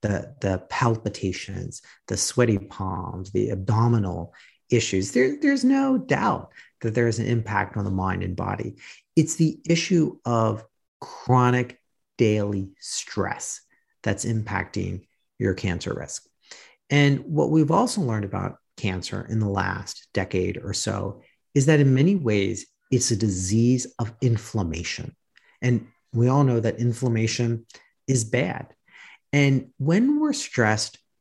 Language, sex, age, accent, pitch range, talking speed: English, male, 40-59, American, 100-125 Hz, 135 wpm